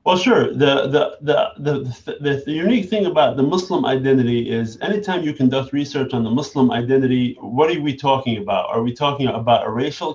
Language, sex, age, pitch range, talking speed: Arabic, male, 30-49, 120-145 Hz, 195 wpm